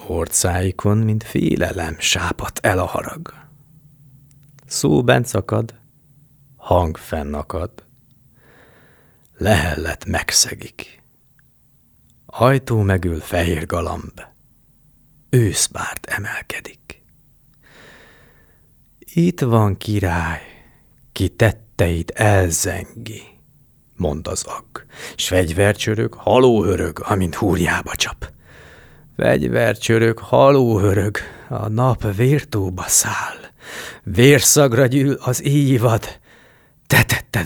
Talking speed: 70 wpm